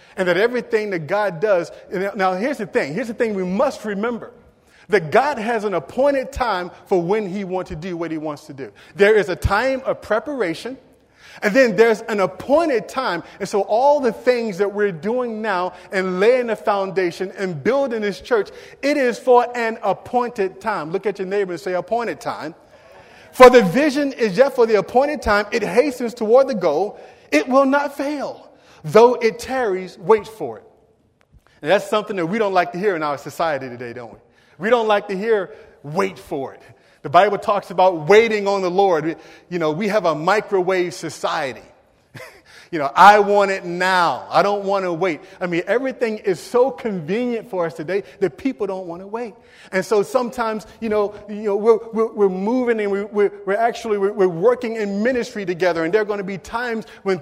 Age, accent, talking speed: 40-59, American, 205 wpm